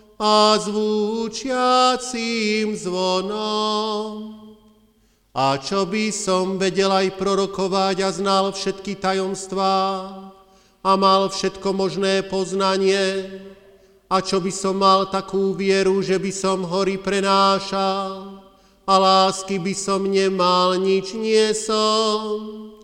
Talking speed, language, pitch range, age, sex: 100 wpm, Slovak, 190-215 Hz, 40-59, male